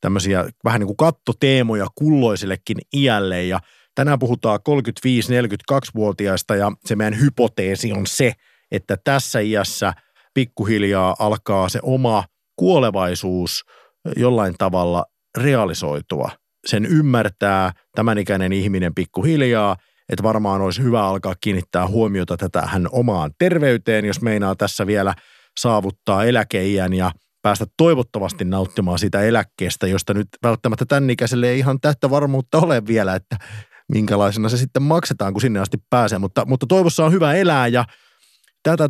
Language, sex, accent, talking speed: Finnish, male, native, 130 wpm